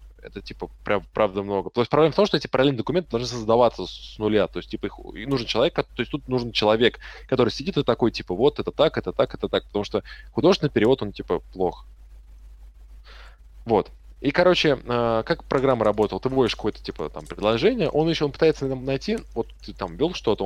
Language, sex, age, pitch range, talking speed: Russian, male, 20-39, 90-135 Hz, 215 wpm